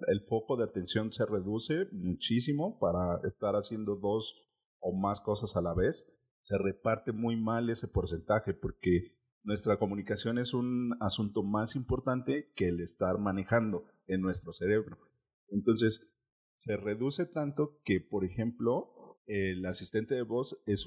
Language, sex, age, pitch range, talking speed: Spanish, male, 40-59, 95-115 Hz, 145 wpm